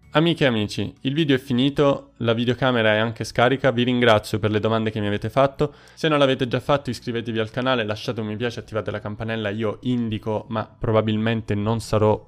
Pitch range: 105-130 Hz